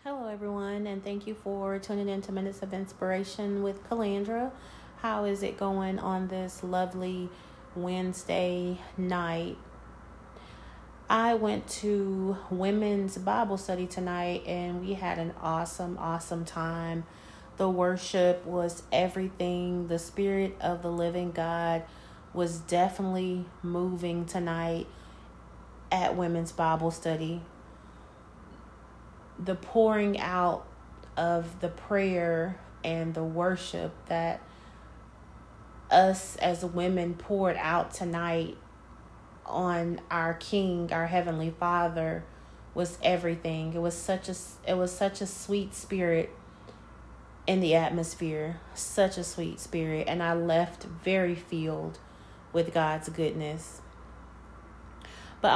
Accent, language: American, English